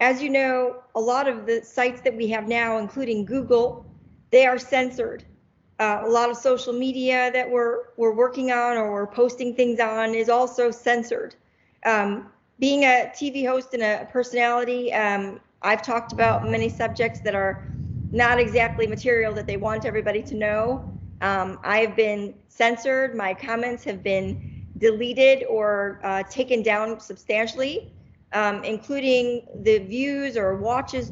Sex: female